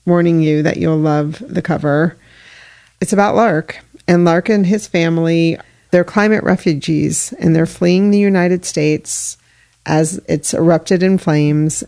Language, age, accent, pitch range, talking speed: English, 40-59, American, 155-180 Hz, 145 wpm